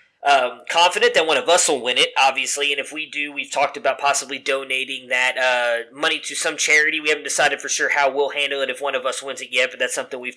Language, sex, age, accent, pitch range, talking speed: English, male, 20-39, American, 135-160 Hz, 260 wpm